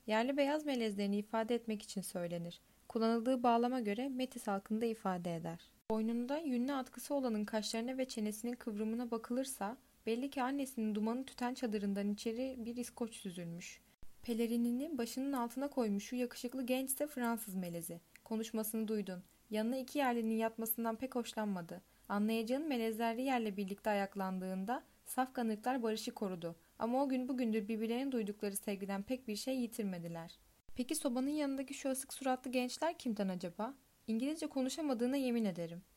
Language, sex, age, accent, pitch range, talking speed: Turkish, female, 10-29, native, 205-260 Hz, 135 wpm